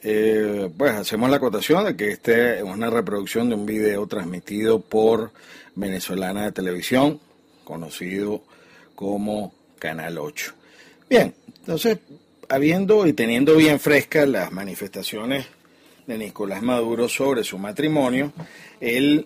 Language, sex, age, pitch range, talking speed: Spanish, male, 50-69, 110-145 Hz, 120 wpm